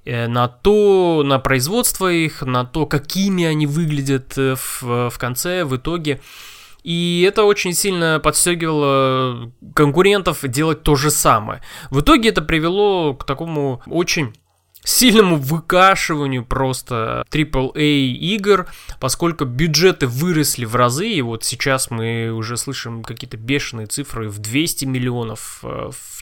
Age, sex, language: 20-39, male, Russian